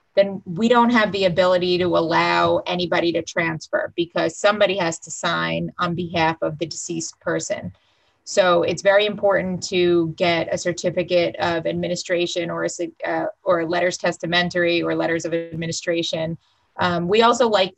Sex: female